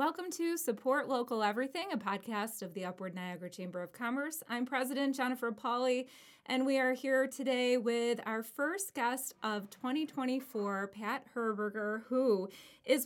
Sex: female